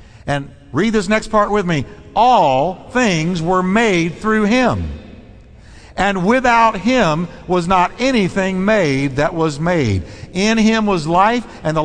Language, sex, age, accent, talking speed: English, male, 60-79, American, 145 wpm